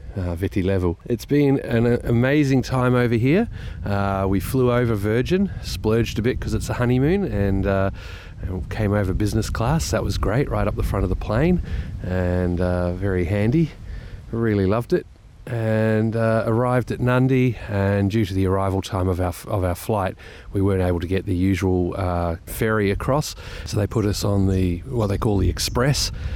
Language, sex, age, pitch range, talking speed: English, male, 30-49, 95-125 Hz, 190 wpm